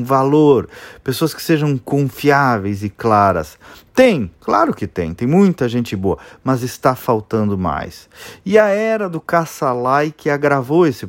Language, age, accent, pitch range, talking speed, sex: Portuguese, 40-59, Brazilian, 120-185 Hz, 145 wpm, male